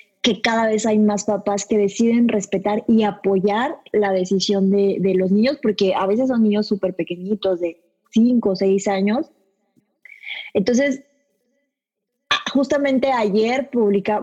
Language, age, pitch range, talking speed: Spanish, 20-39, 200-250 Hz, 140 wpm